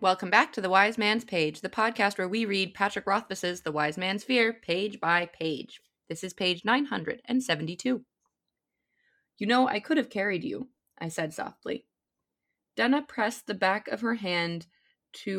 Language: English